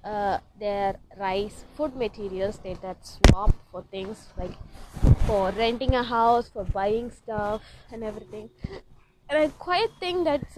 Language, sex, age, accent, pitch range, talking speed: English, female, 20-39, Indian, 175-230 Hz, 140 wpm